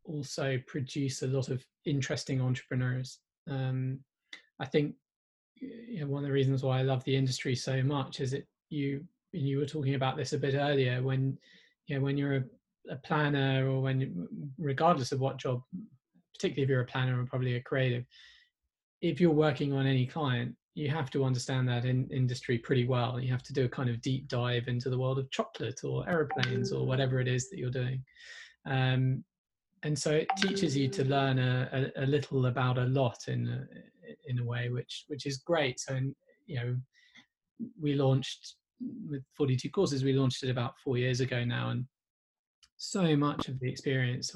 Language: English